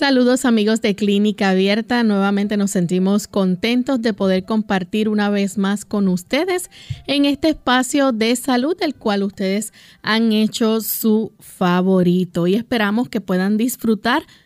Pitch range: 190-230 Hz